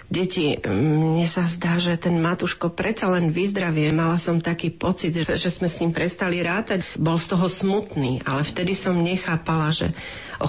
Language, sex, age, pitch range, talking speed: Slovak, female, 40-59, 150-175 Hz, 170 wpm